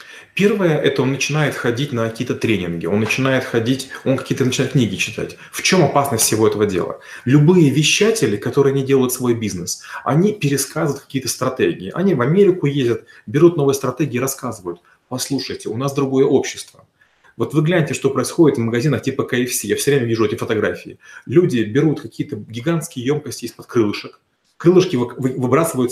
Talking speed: 160 wpm